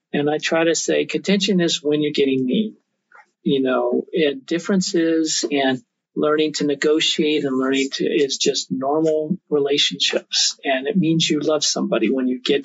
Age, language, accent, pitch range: 50-69, English, American, 140-175 Hz